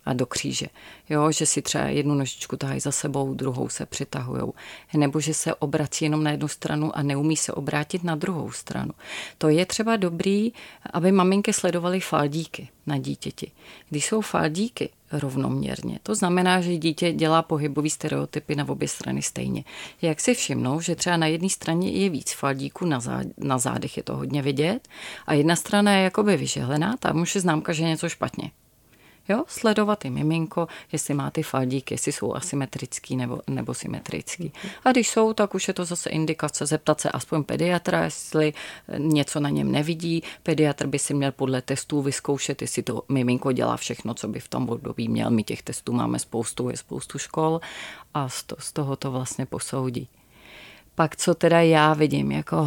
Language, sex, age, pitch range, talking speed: Czech, female, 30-49, 135-170 Hz, 180 wpm